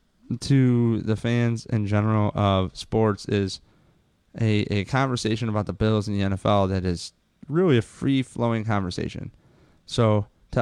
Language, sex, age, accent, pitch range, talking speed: English, male, 20-39, American, 105-130 Hz, 145 wpm